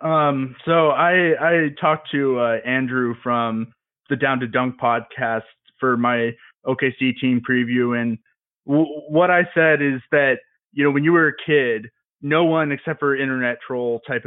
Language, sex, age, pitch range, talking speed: English, male, 20-39, 130-160 Hz, 170 wpm